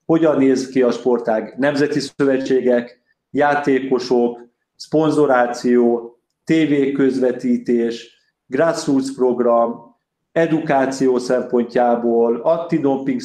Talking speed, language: 70 wpm, Hungarian